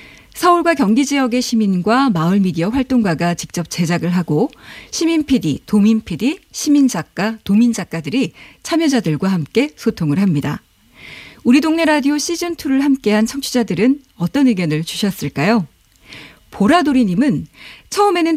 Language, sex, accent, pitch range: Korean, female, native, 185-260 Hz